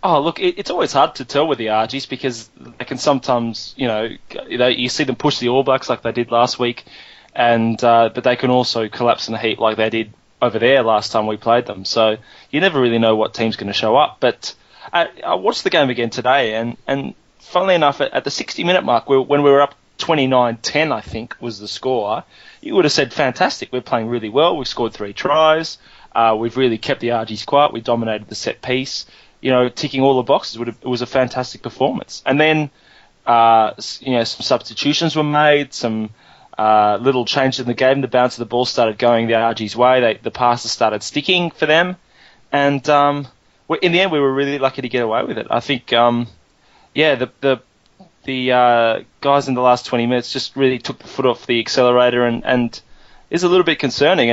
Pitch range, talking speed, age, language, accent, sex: 115-135 Hz, 215 wpm, 20-39, English, Australian, male